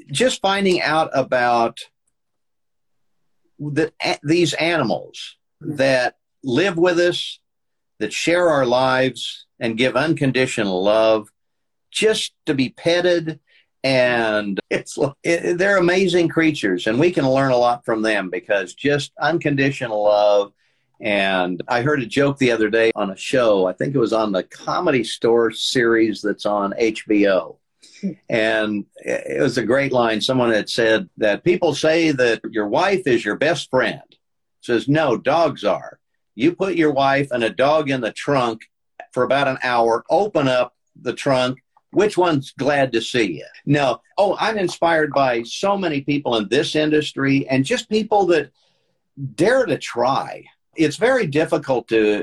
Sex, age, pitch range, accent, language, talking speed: male, 50-69, 115-160 Hz, American, English, 155 wpm